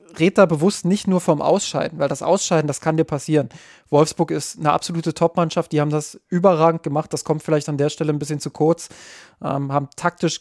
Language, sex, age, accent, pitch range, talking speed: German, male, 20-39, German, 145-165 Hz, 210 wpm